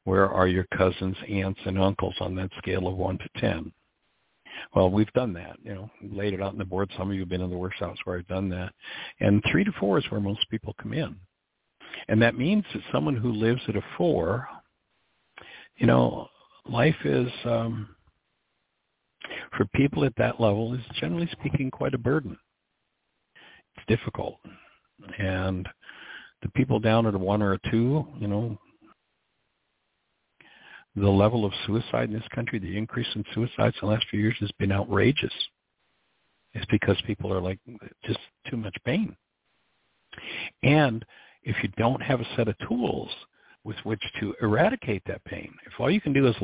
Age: 60-79